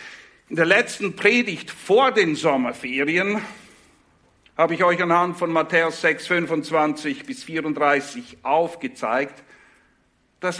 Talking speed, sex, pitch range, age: 110 wpm, male, 170-250 Hz, 60-79